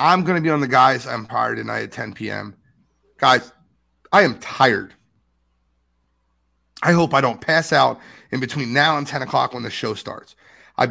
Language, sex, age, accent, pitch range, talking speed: English, male, 30-49, American, 110-155 Hz, 180 wpm